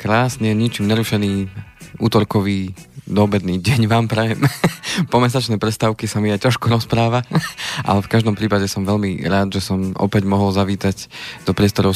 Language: Slovak